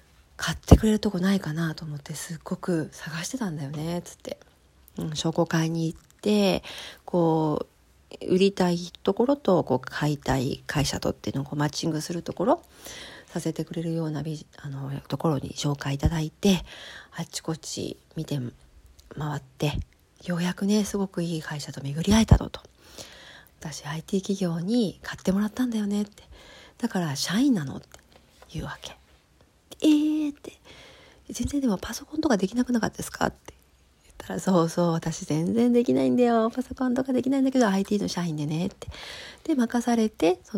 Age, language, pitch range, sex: 40-59, Japanese, 155-210 Hz, female